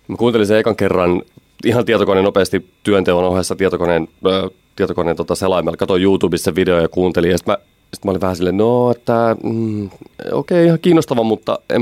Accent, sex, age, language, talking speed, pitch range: native, male, 30-49, Finnish, 190 wpm, 90-115 Hz